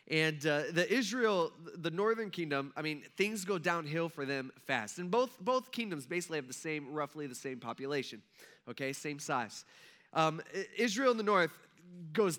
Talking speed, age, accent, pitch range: 175 wpm, 20-39, American, 145-195 Hz